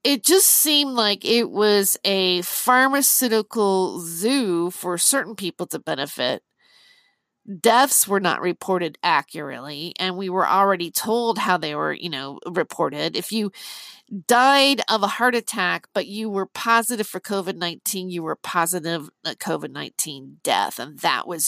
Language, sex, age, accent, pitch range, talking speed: English, female, 40-59, American, 185-260 Hz, 145 wpm